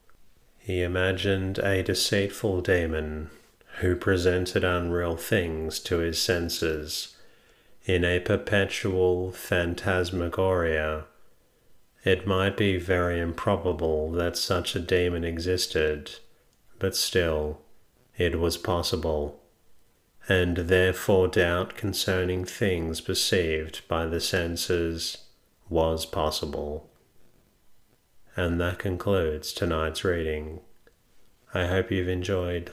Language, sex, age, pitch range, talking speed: English, male, 40-59, 80-95 Hz, 95 wpm